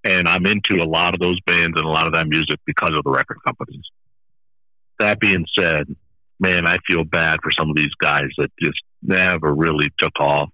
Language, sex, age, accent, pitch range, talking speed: English, male, 50-69, American, 85-110 Hz, 210 wpm